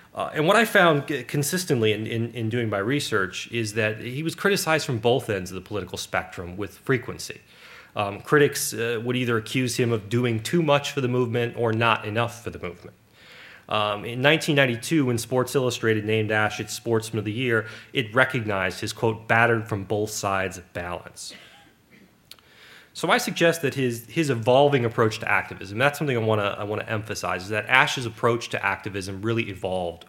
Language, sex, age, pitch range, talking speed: English, male, 30-49, 105-125 Hz, 185 wpm